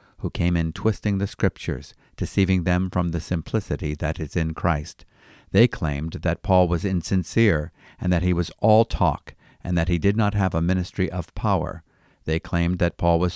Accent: American